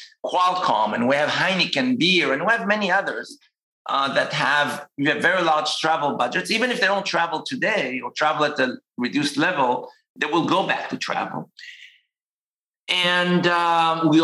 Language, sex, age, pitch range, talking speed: English, male, 50-69, 140-195 Hz, 175 wpm